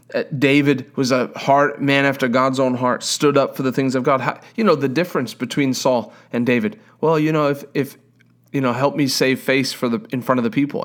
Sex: male